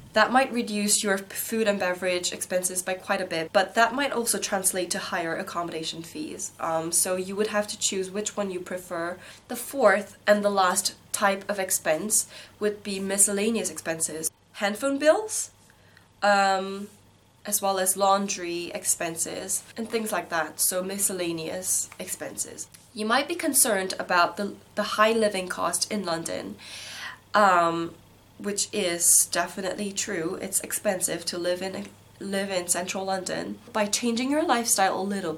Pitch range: 170-205 Hz